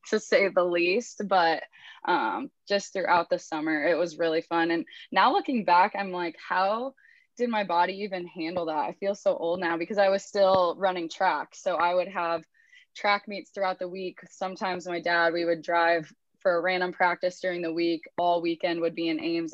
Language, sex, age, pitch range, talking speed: English, female, 20-39, 165-195 Hz, 205 wpm